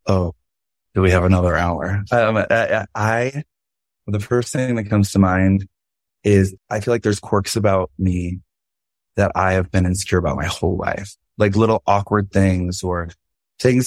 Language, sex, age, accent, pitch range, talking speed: English, male, 20-39, American, 90-105 Hz, 175 wpm